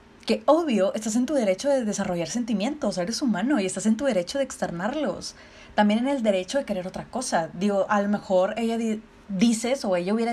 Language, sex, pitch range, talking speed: Spanish, female, 200-255 Hz, 205 wpm